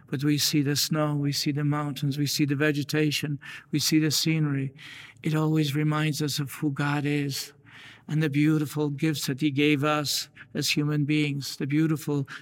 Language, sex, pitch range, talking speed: English, male, 145-150 Hz, 185 wpm